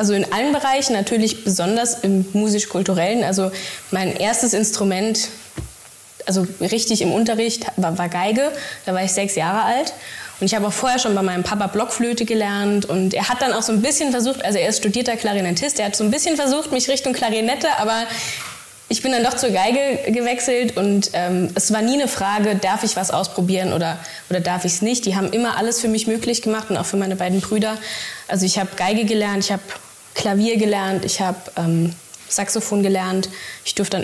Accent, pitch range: German, 190-225 Hz